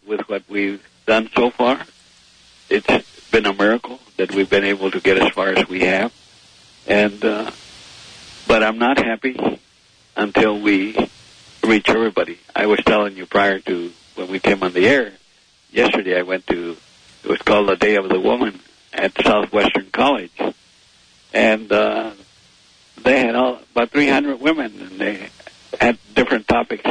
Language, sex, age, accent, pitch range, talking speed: English, male, 70-89, American, 100-125 Hz, 160 wpm